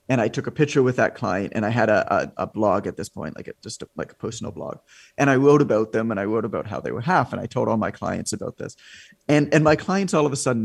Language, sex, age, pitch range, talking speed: English, male, 30-49, 110-135 Hz, 310 wpm